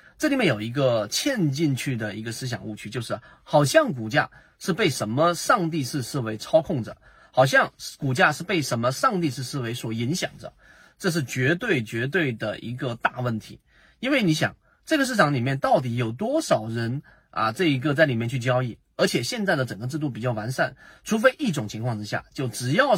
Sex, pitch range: male, 120-165 Hz